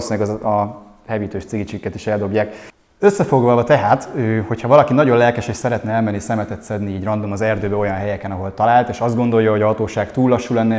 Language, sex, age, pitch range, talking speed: Hungarian, male, 20-39, 105-120 Hz, 185 wpm